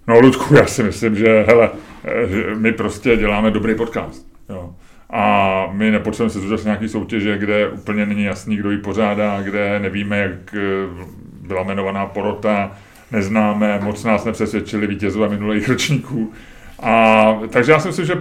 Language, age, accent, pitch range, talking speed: Czech, 30-49, native, 105-130 Hz, 155 wpm